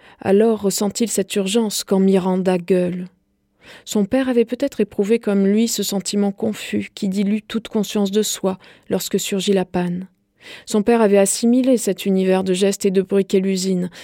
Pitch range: 190-220 Hz